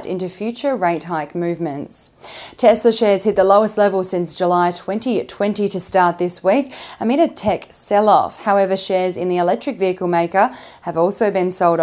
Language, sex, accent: English, female, Australian